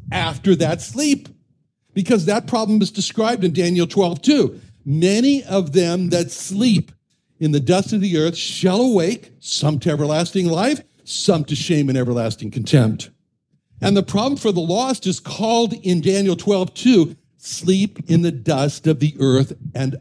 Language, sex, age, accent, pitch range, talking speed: English, male, 60-79, American, 160-220 Hz, 165 wpm